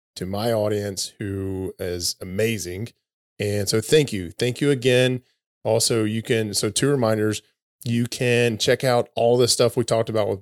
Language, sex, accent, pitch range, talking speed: English, male, American, 100-120 Hz, 175 wpm